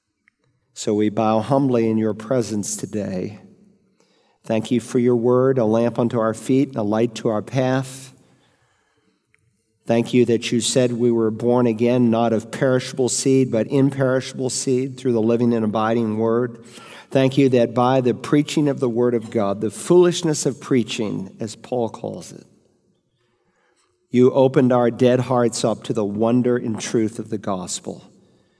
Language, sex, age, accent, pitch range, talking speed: English, male, 50-69, American, 110-130 Hz, 165 wpm